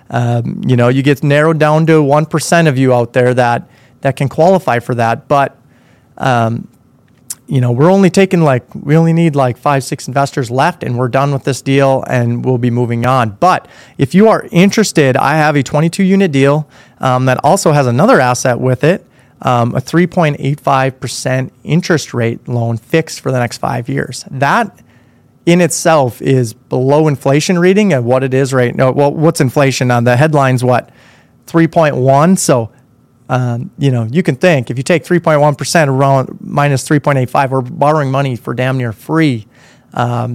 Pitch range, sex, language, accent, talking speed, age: 125-160 Hz, male, English, American, 180 wpm, 30-49